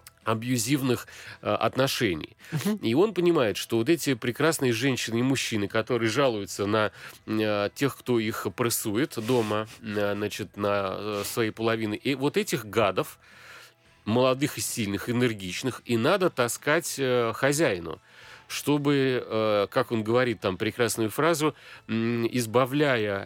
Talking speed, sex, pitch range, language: 115 wpm, male, 105-125 Hz, Russian